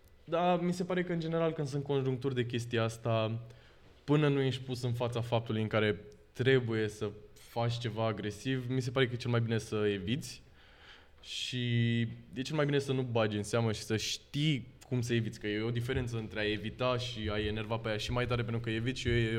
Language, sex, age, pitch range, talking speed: Romanian, male, 20-39, 105-135 Hz, 225 wpm